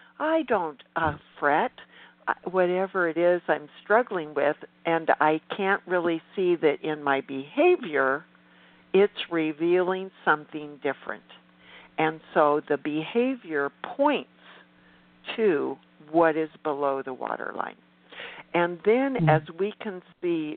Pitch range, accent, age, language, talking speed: 140-180 Hz, American, 60-79, English, 115 wpm